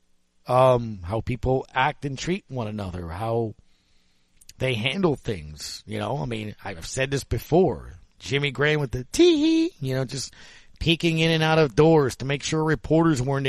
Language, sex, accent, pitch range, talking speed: English, male, American, 125-175 Hz, 175 wpm